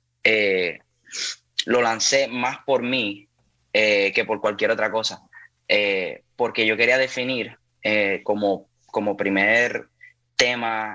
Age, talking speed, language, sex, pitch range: 10-29, 120 wpm, Spanish, male, 95-115 Hz